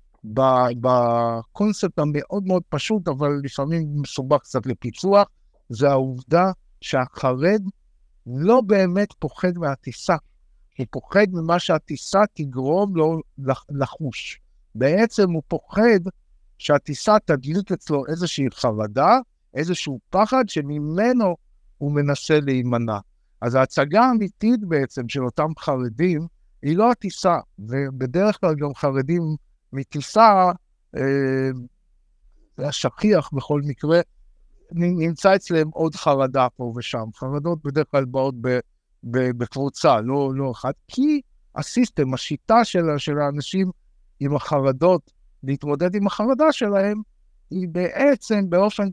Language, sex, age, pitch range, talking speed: Hebrew, male, 60-79, 130-190 Hz, 105 wpm